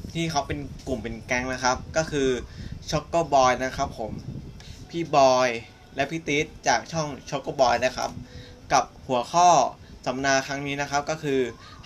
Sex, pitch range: male, 130-150 Hz